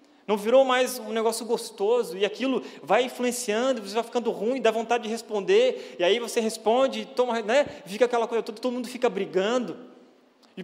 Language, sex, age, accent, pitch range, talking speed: Portuguese, male, 20-39, Brazilian, 180-255 Hz, 180 wpm